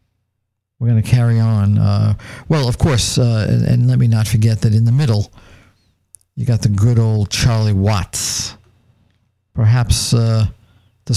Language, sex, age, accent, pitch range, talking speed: English, male, 50-69, American, 105-125 Hz, 160 wpm